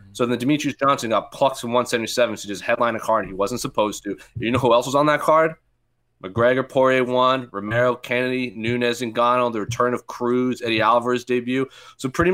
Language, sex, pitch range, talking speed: English, male, 105-130 Hz, 215 wpm